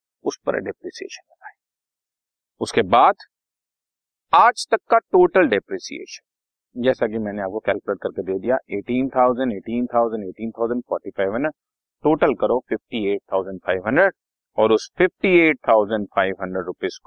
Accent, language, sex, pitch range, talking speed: native, Hindi, male, 110-175 Hz, 95 wpm